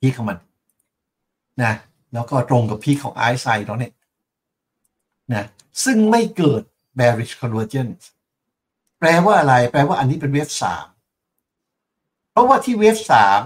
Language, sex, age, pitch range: Thai, male, 60-79, 125-175 Hz